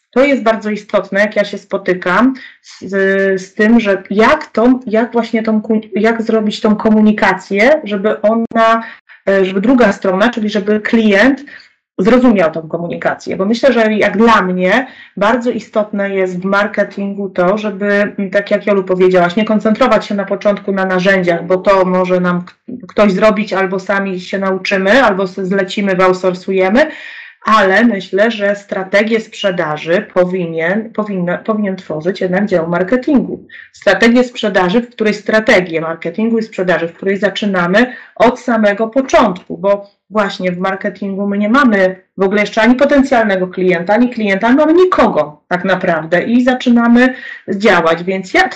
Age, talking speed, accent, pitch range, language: 30-49, 145 wpm, native, 185-220 Hz, Polish